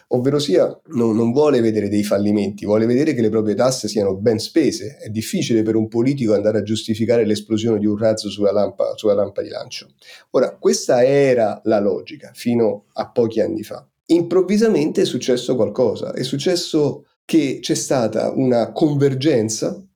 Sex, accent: male, native